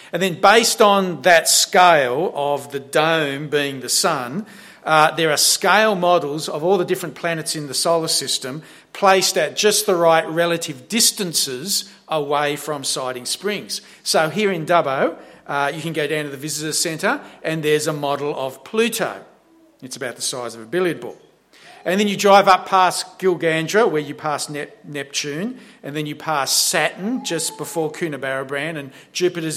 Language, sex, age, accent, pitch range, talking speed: English, male, 50-69, Australian, 150-200 Hz, 175 wpm